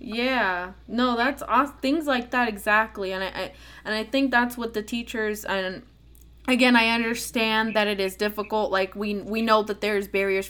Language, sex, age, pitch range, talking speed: English, female, 10-29, 210-250 Hz, 190 wpm